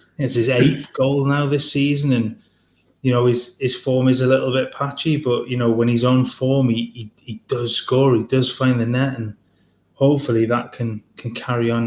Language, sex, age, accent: English, male, 20-39, British